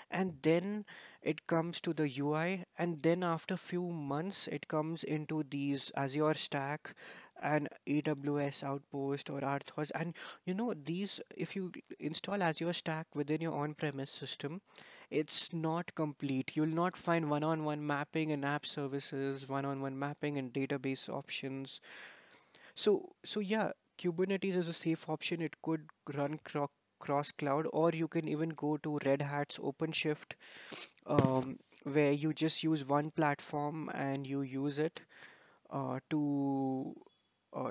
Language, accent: English, Indian